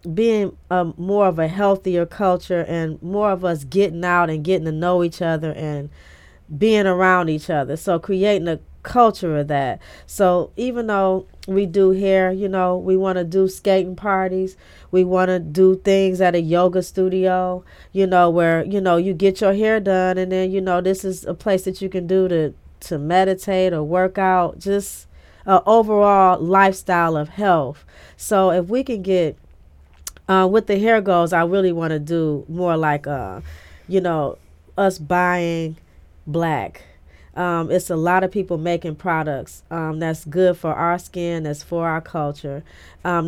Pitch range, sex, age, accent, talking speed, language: 160-190 Hz, female, 30-49, American, 180 wpm, English